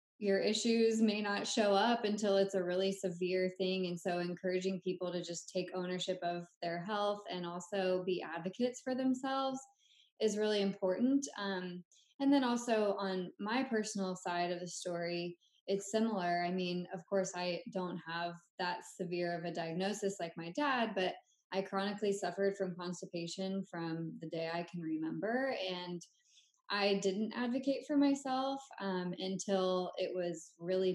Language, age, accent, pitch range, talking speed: English, 20-39, American, 180-205 Hz, 160 wpm